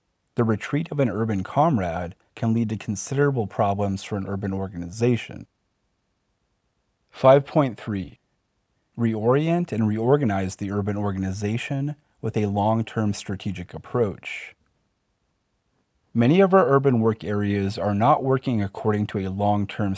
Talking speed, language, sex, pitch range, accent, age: 120 wpm, English, male, 100-120 Hz, American, 30-49